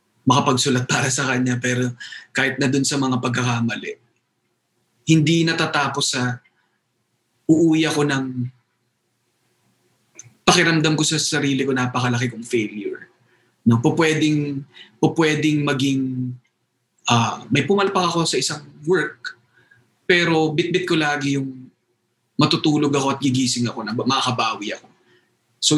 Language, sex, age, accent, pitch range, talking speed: Filipino, male, 20-39, native, 125-160 Hz, 120 wpm